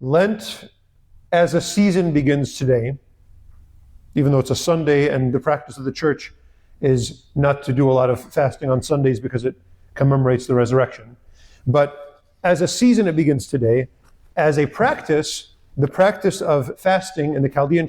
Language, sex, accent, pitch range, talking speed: English, male, American, 125-160 Hz, 165 wpm